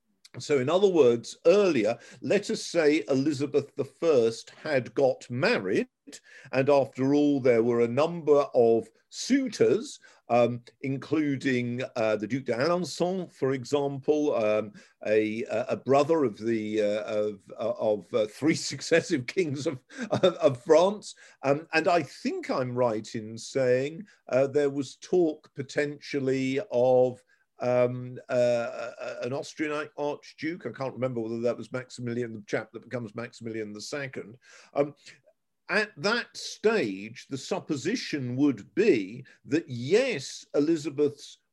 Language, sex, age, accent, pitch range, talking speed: English, male, 50-69, British, 120-155 Hz, 130 wpm